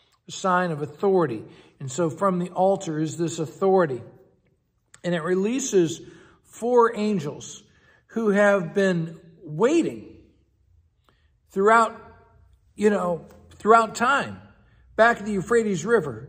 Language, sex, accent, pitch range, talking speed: English, male, American, 145-195 Hz, 110 wpm